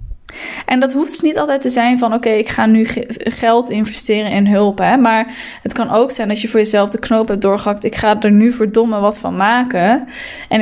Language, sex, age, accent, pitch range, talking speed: Dutch, female, 10-29, Dutch, 200-235 Hz, 215 wpm